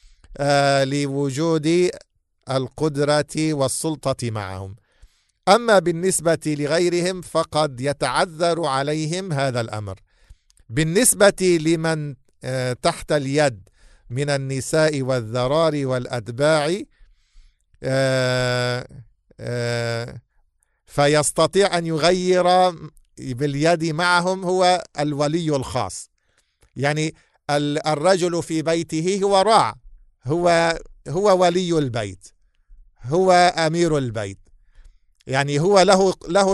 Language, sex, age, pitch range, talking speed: English, male, 50-69, 125-165 Hz, 75 wpm